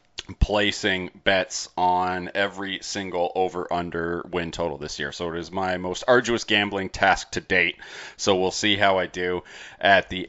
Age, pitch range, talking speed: 30-49, 90-105 Hz, 170 wpm